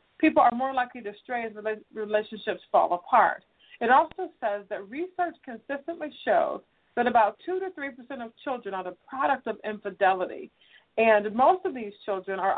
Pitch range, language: 200-285 Hz, English